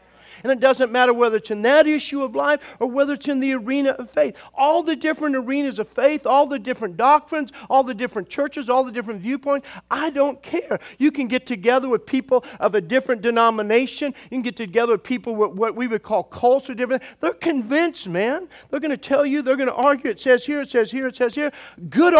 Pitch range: 210-275 Hz